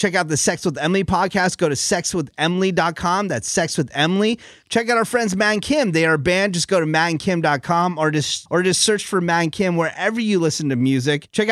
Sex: male